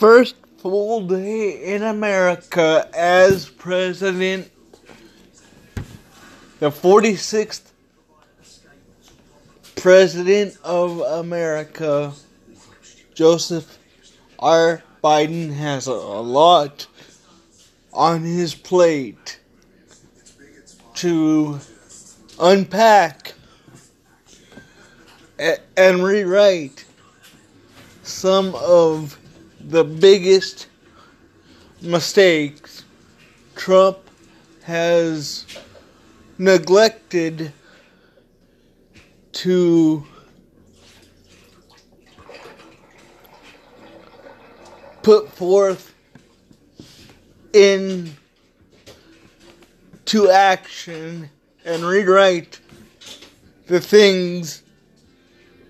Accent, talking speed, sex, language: American, 45 wpm, male, English